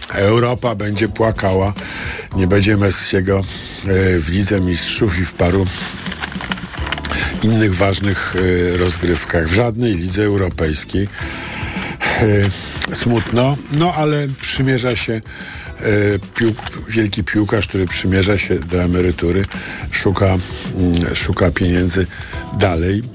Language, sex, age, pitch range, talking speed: Polish, male, 50-69, 95-110 Hz, 105 wpm